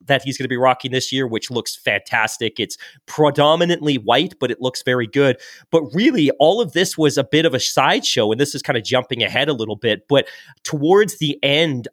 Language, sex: English, male